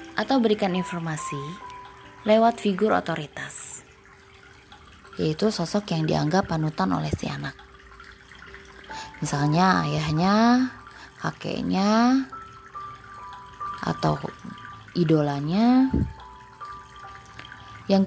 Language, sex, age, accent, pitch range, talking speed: Indonesian, female, 20-39, native, 150-235 Hz, 65 wpm